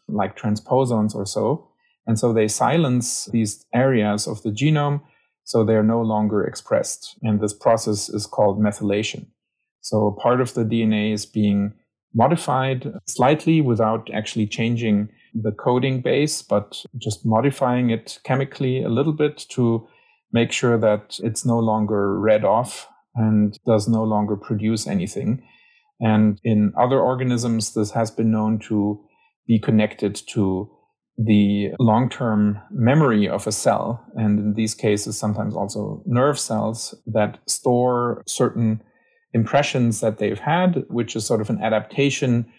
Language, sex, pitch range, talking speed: English, male, 105-125 Hz, 145 wpm